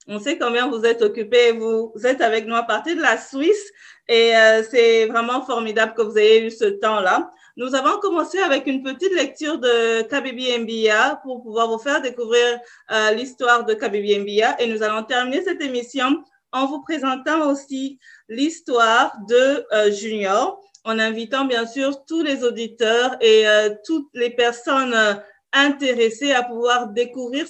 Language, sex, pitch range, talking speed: French, female, 215-270 Hz, 155 wpm